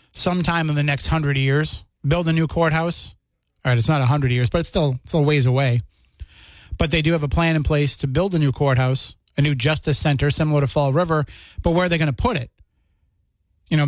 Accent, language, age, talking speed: American, English, 30-49, 235 wpm